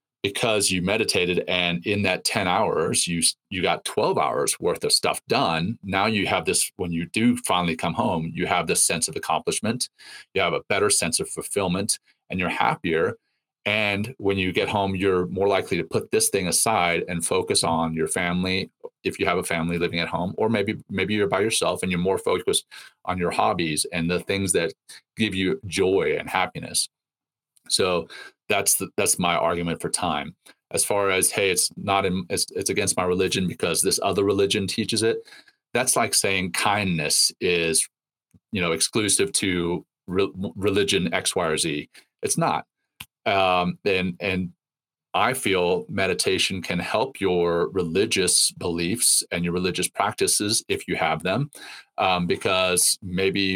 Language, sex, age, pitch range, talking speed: English, male, 30-49, 90-105 Hz, 175 wpm